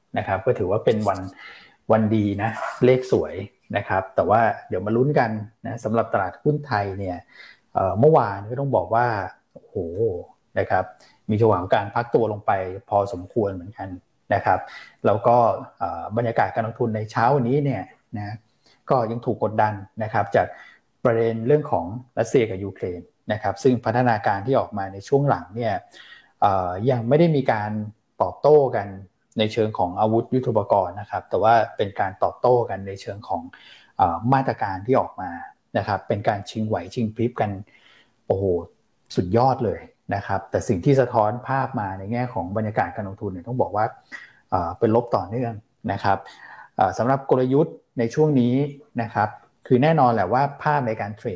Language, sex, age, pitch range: Thai, male, 20-39, 100-125 Hz